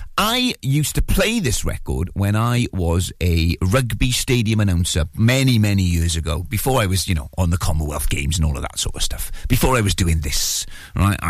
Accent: British